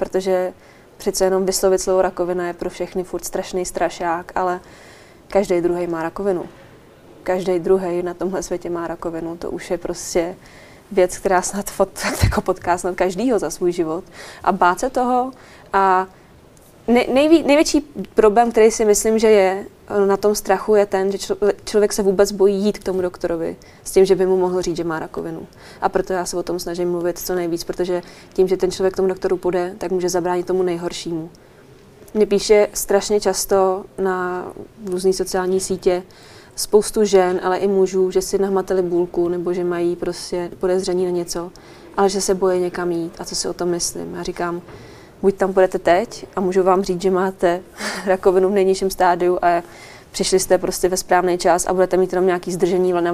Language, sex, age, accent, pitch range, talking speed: Czech, female, 20-39, native, 180-195 Hz, 185 wpm